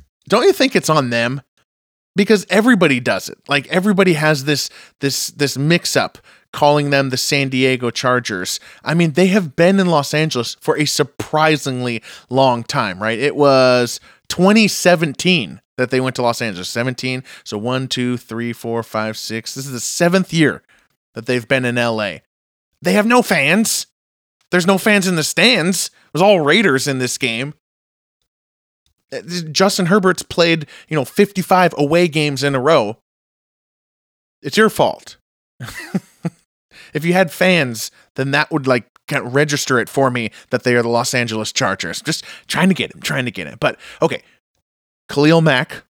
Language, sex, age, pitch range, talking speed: English, male, 20-39, 125-185 Hz, 165 wpm